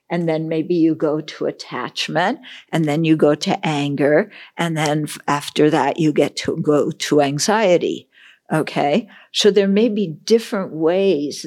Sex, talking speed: female, 155 wpm